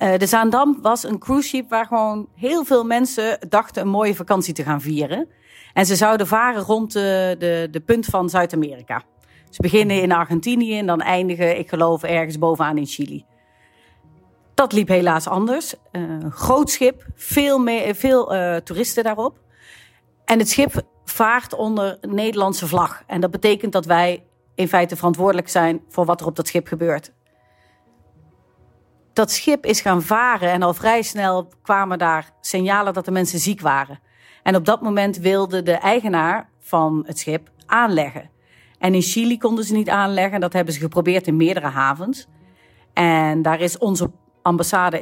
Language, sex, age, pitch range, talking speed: Dutch, female, 40-59, 165-220 Hz, 165 wpm